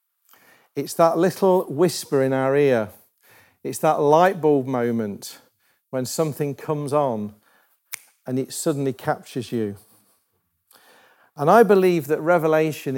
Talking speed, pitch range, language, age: 120 wpm, 135-170 Hz, English, 50-69